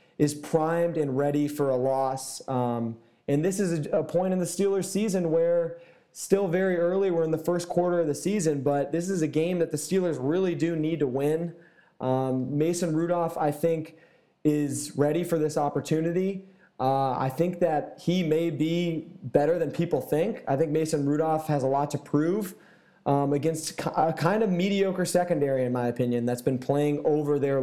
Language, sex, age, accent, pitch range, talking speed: English, male, 20-39, American, 135-165 Hz, 190 wpm